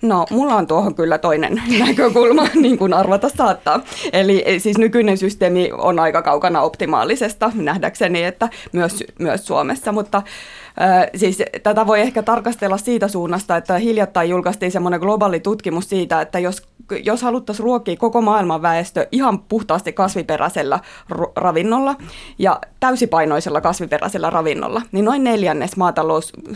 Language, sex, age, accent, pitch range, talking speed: Finnish, female, 20-39, native, 170-220 Hz, 135 wpm